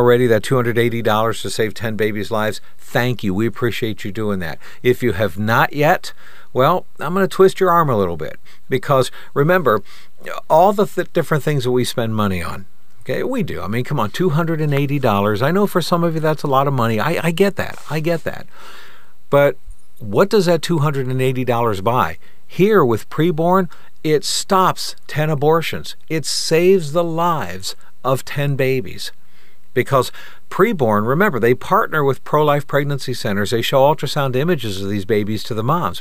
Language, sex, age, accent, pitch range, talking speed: English, male, 60-79, American, 110-155 Hz, 175 wpm